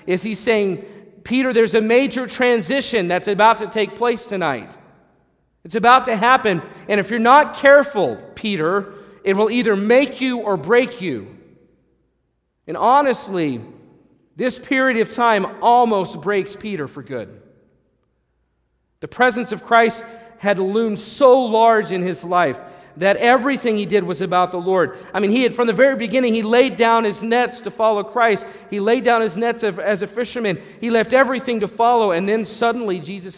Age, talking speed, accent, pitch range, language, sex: 40-59, 170 wpm, American, 155-230 Hz, English, male